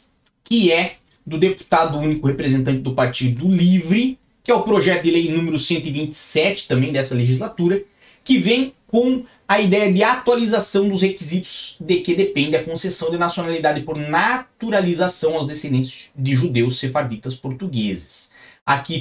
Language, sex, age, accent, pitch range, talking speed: Portuguese, male, 30-49, Brazilian, 130-195 Hz, 140 wpm